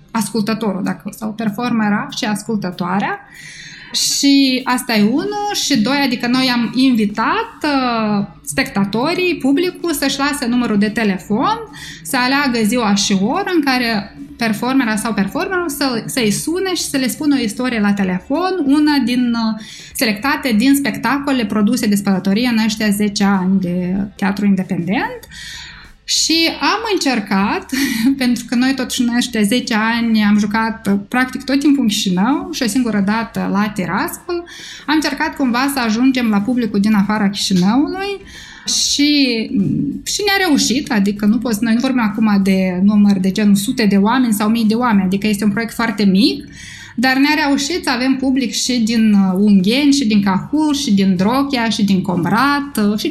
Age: 20-39